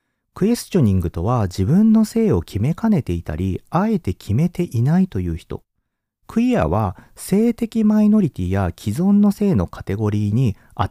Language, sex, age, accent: Japanese, male, 40-59, native